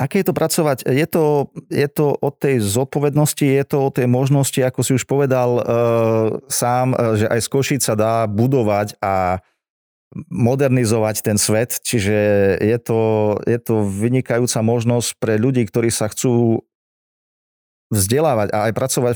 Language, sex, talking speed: Slovak, male, 155 wpm